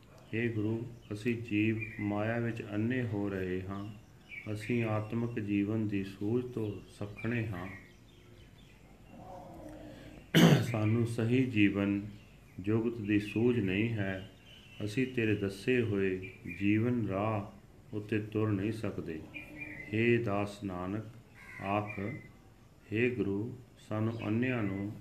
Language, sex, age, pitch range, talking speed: Punjabi, male, 40-59, 100-115 Hz, 110 wpm